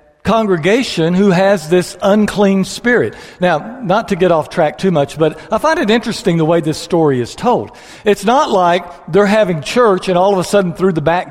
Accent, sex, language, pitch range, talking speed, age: American, male, English, 175-235 Hz, 205 wpm, 60-79